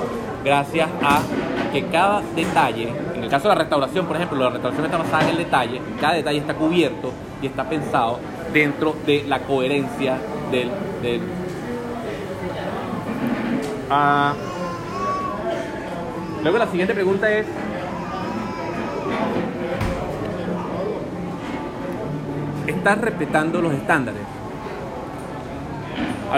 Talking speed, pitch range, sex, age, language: 100 wpm, 145-175 Hz, male, 30-49, Spanish